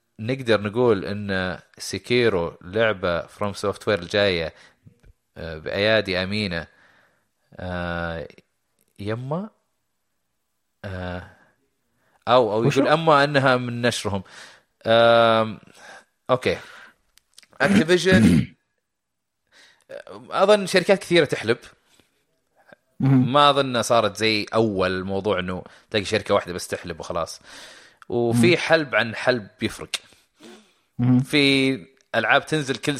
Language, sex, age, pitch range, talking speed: Arabic, male, 30-49, 100-145 Hz, 90 wpm